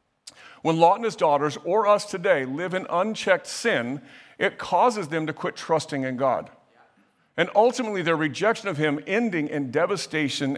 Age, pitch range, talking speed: 50-69, 145-190 Hz, 165 wpm